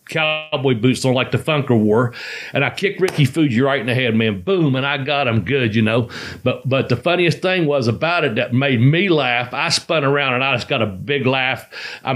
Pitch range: 130-175 Hz